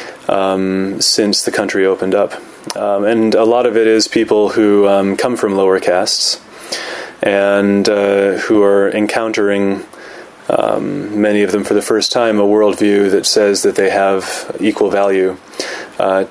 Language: English